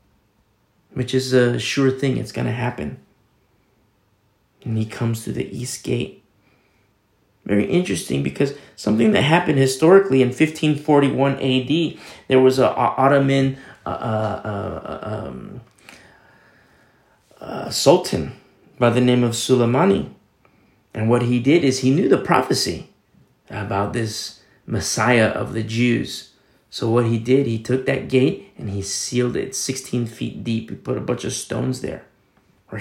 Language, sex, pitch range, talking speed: English, male, 110-135 Hz, 145 wpm